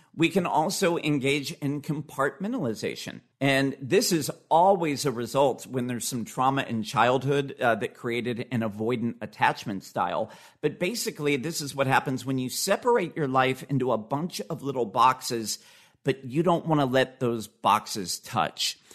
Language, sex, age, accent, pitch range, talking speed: English, male, 50-69, American, 125-160 Hz, 160 wpm